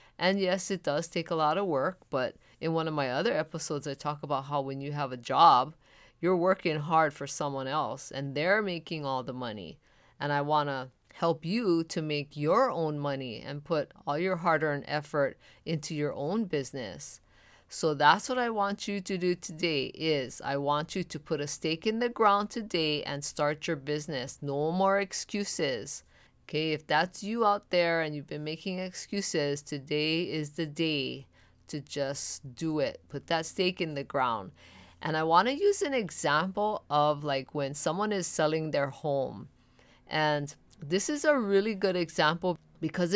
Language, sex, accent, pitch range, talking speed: English, female, American, 140-180 Hz, 185 wpm